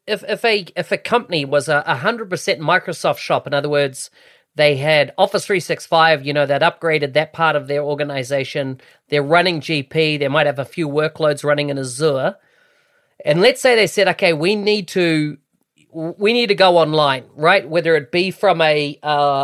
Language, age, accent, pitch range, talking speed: English, 30-49, Australian, 145-180 Hz, 190 wpm